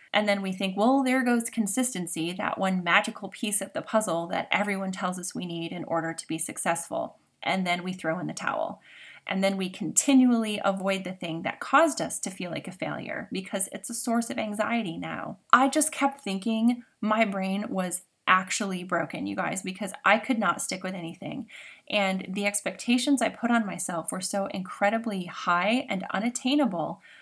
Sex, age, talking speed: female, 20-39, 190 wpm